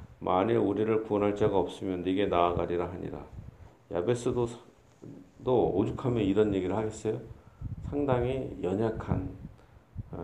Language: Korean